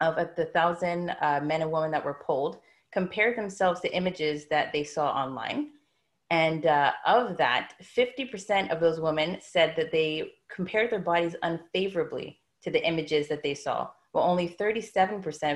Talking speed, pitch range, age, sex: 160 wpm, 155-190 Hz, 30-49, female